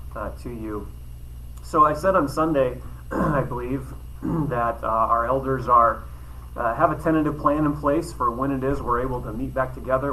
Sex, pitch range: male, 110-135 Hz